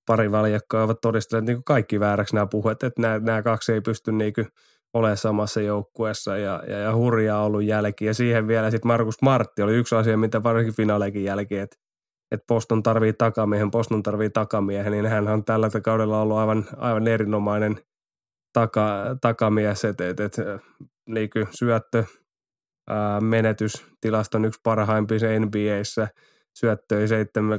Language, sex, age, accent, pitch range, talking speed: Finnish, male, 20-39, native, 105-115 Hz, 145 wpm